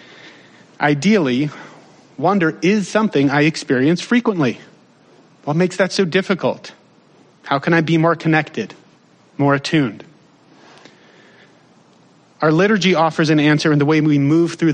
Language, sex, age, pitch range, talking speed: English, male, 40-59, 150-180 Hz, 125 wpm